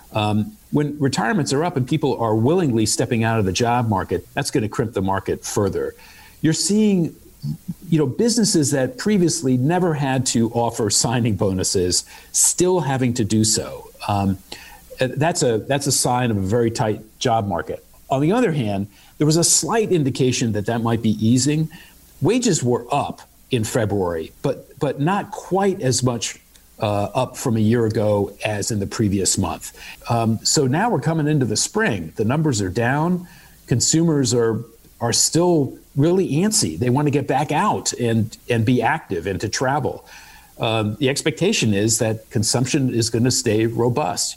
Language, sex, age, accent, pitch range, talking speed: English, male, 50-69, American, 115-155 Hz, 175 wpm